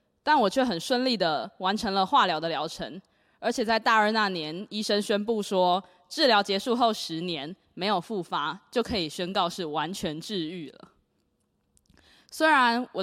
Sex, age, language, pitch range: female, 20-39, Chinese, 180-235 Hz